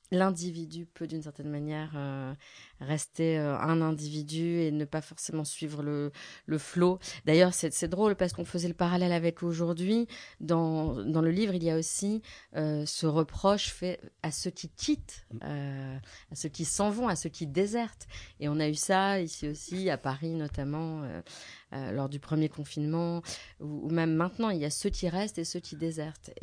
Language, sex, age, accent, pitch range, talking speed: French, female, 30-49, French, 150-180 Hz, 190 wpm